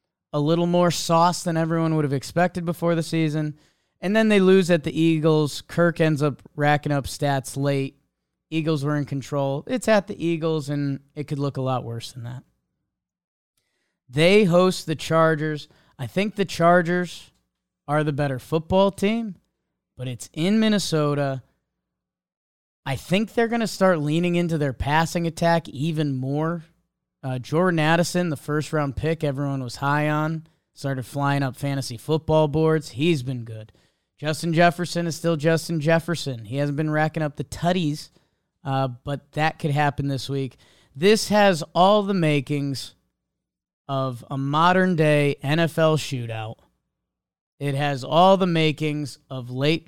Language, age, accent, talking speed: English, 20-39, American, 155 wpm